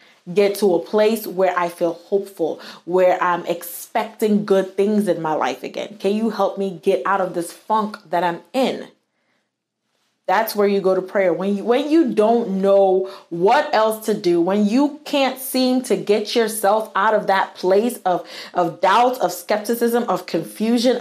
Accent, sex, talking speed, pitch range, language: American, female, 175 wpm, 175-215 Hz, English